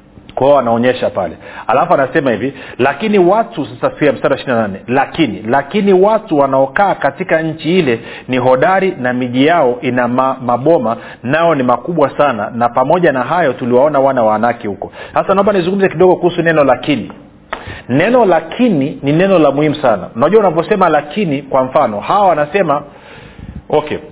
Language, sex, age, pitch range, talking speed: Swahili, male, 40-59, 120-155 Hz, 145 wpm